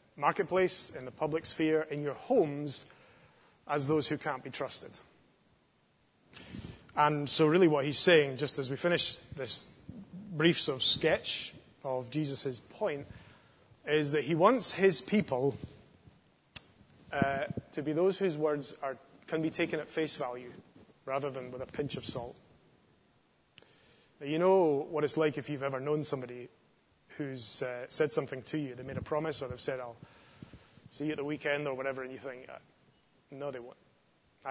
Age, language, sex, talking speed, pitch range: 20-39, English, male, 165 wpm, 130-155 Hz